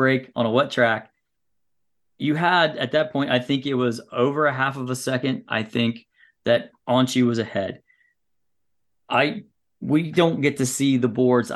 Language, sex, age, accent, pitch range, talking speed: English, male, 30-49, American, 120-135 Hz, 175 wpm